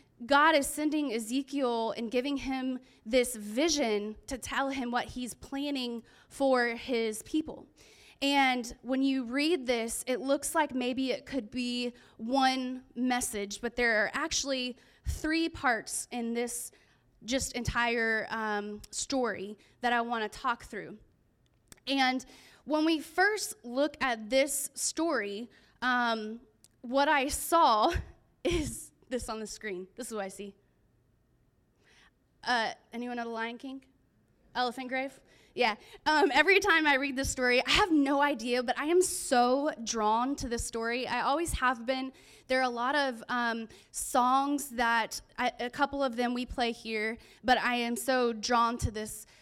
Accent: American